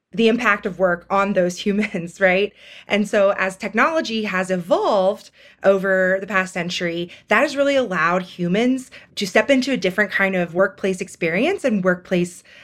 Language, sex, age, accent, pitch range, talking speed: English, female, 20-39, American, 185-225 Hz, 160 wpm